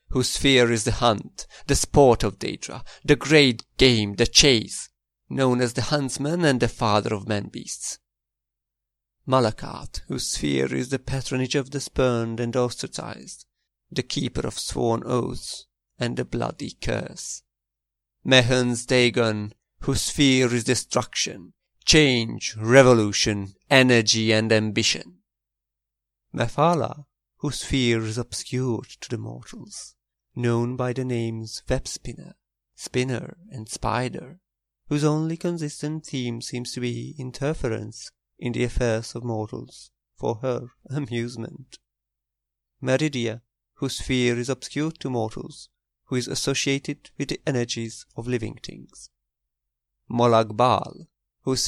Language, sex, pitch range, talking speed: English, male, 115-130 Hz, 120 wpm